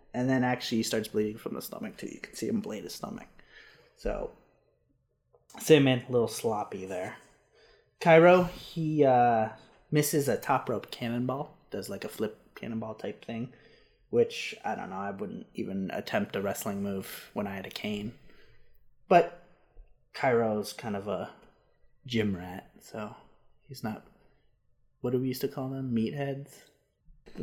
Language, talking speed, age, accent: English, 160 wpm, 20-39, American